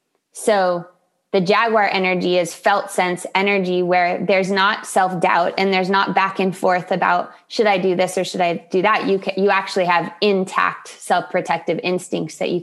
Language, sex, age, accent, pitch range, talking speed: English, female, 20-39, American, 175-200 Hz, 180 wpm